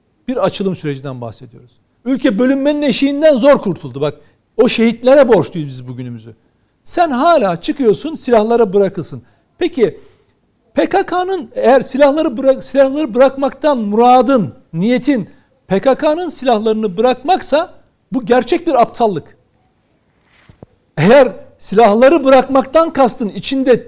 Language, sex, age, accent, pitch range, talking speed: Turkish, male, 60-79, native, 225-285 Hz, 100 wpm